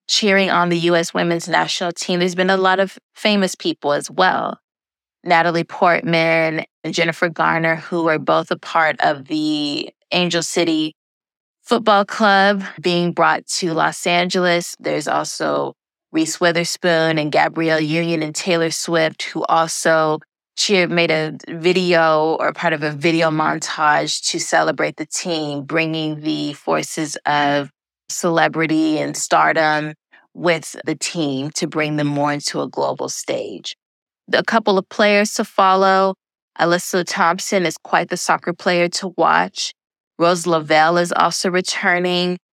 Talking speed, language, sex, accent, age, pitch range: 140 wpm, English, female, American, 20-39, 160-185 Hz